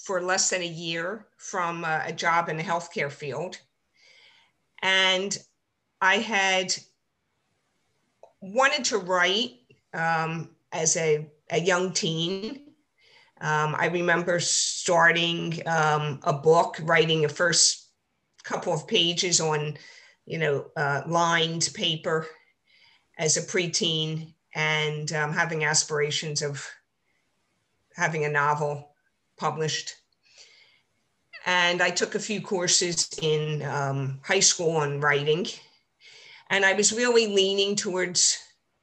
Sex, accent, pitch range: female, American, 150-185 Hz